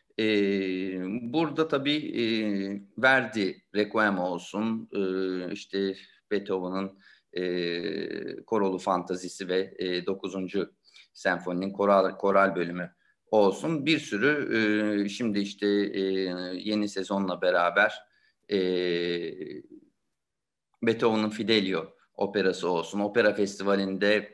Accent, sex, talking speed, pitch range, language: native, male, 90 wpm, 95-120 Hz, Turkish